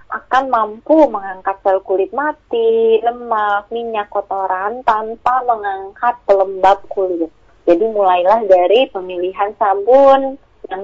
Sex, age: female, 20-39